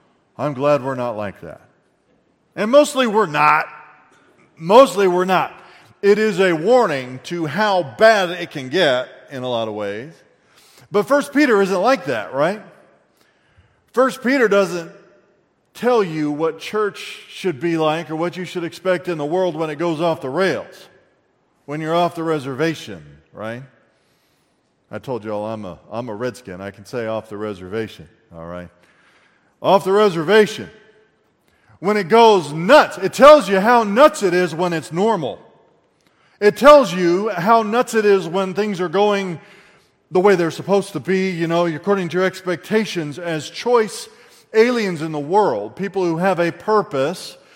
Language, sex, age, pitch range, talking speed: English, male, 40-59, 145-205 Hz, 170 wpm